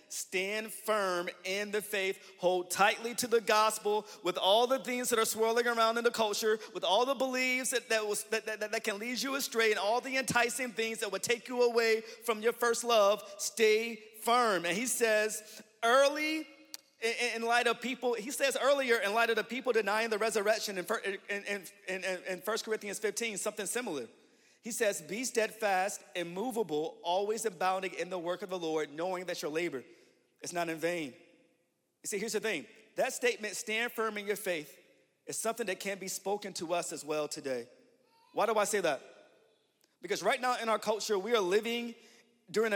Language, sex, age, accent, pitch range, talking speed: English, male, 40-59, American, 180-230 Hz, 200 wpm